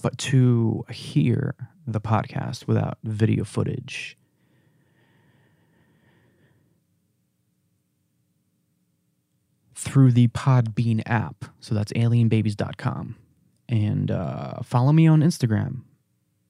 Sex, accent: male, American